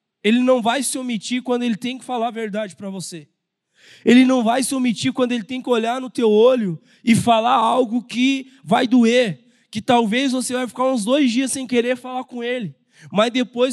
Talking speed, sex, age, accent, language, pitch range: 210 wpm, male, 20-39, Brazilian, Portuguese, 205-245 Hz